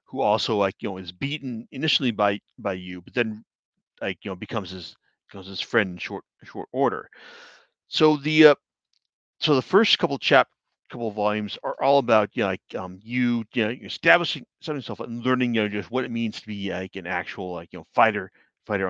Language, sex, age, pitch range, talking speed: English, male, 40-59, 100-125 Hz, 220 wpm